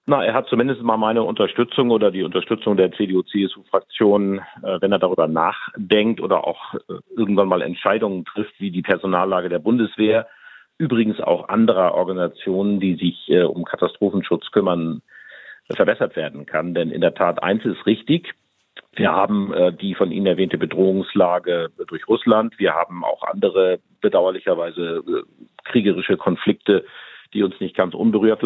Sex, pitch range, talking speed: male, 90-120 Hz, 145 wpm